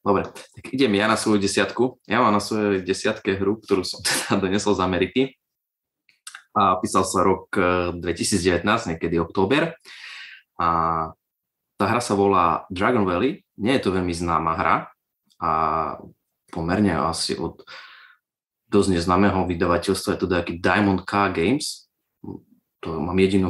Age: 20-39